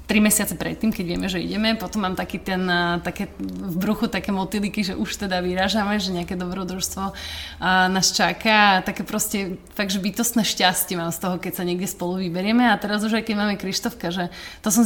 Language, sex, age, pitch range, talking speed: Slovak, female, 20-39, 175-205 Hz, 185 wpm